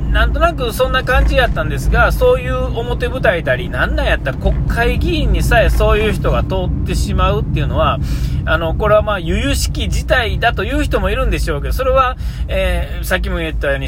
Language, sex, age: Japanese, male, 40-59